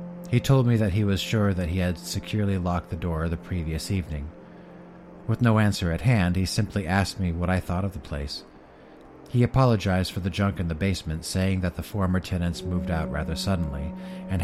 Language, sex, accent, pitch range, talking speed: English, male, American, 85-110 Hz, 210 wpm